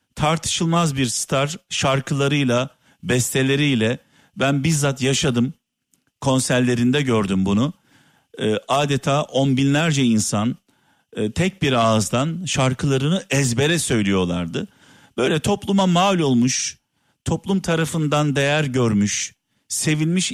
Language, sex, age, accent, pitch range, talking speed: Turkish, male, 50-69, native, 120-165 Hz, 90 wpm